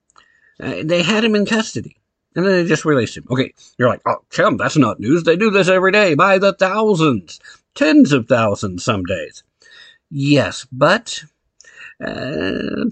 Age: 50-69